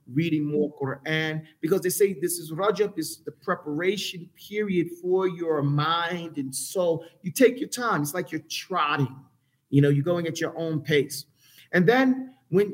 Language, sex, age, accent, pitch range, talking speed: English, male, 40-59, American, 150-195 Hz, 175 wpm